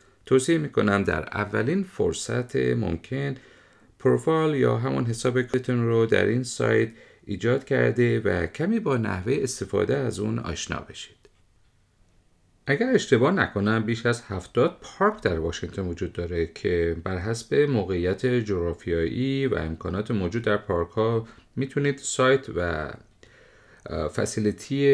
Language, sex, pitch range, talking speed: Persian, male, 95-125 Hz, 130 wpm